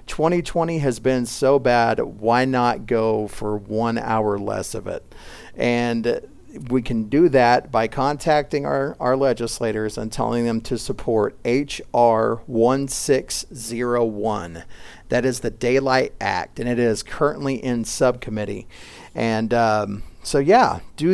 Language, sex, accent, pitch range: English, male, American, 115-140 Hz